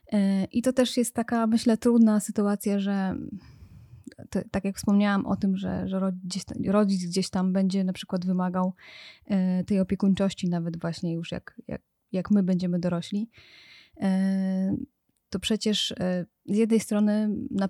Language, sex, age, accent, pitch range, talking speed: Polish, female, 20-39, native, 185-205 Hz, 135 wpm